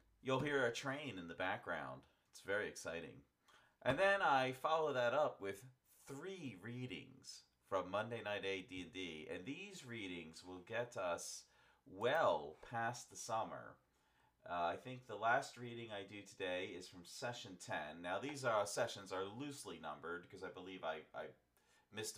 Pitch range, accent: 90-130 Hz, American